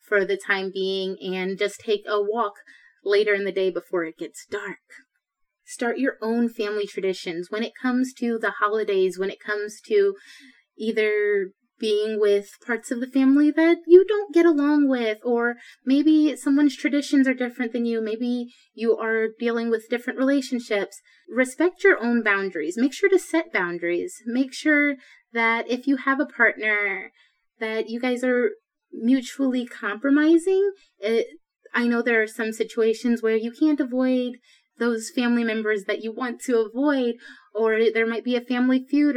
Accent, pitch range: American, 220-275 Hz